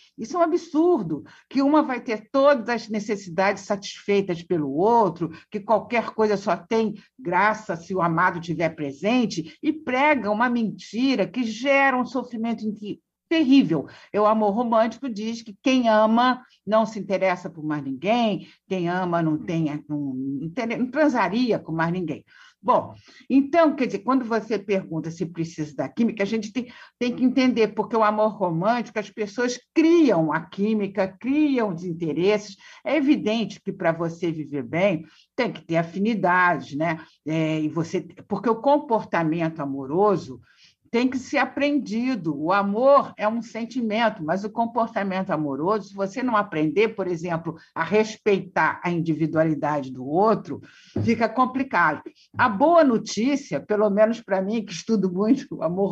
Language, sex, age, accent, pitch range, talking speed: Portuguese, female, 50-69, Brazilian, 180-250 Hz, 150 wpm